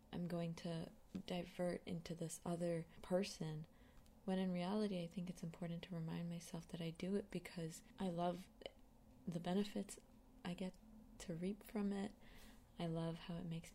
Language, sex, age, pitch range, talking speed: English, female, 20-39, 170-200 Hz, 165 wpm